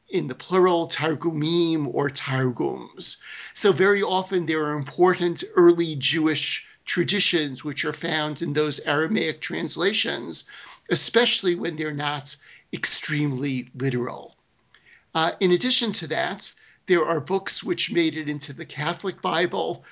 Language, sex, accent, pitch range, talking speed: English, male, American, 150-175 Hz, 130 wpm